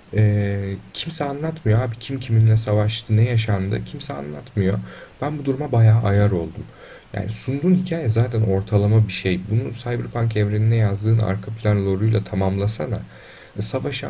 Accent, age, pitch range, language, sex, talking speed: native, 30-49, 105-130 Hz, Turkish, male, 140 wpm